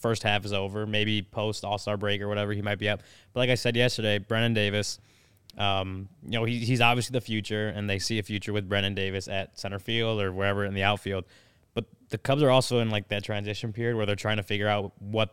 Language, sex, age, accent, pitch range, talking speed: English, male, 20-39, American, 100-110 Hz, 240 wpm